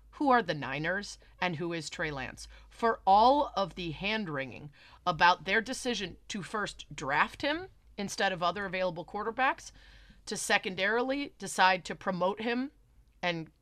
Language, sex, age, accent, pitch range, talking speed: English, female, 30-49, American, 165-210 Hz, 145 wpm